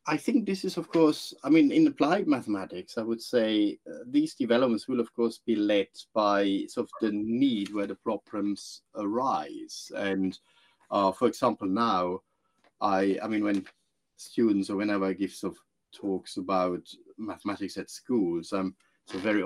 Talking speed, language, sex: 170 wpm, English, male